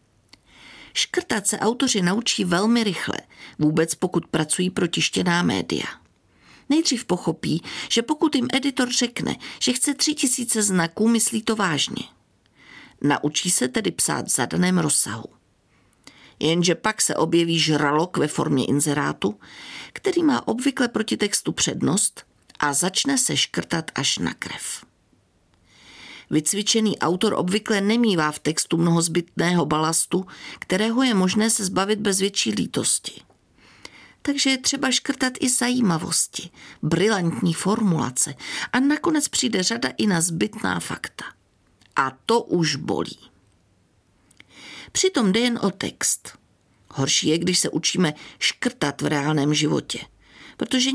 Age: 50-69